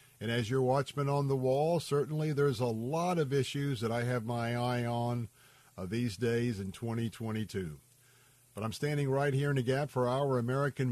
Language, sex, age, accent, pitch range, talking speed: English, male, 50-69, American, 120-140 Hz, 190 wpm